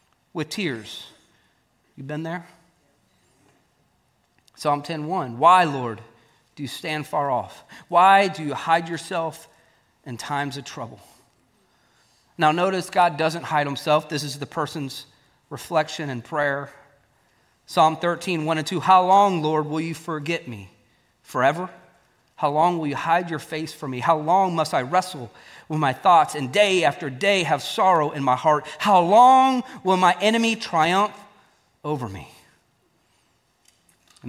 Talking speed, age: 150 wpm, 40-59